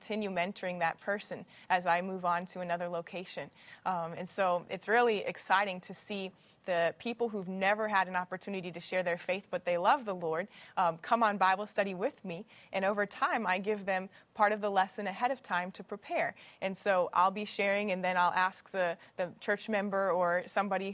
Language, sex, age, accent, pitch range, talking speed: English, female, 20-39, American, 185-210 Hz, 205 wpm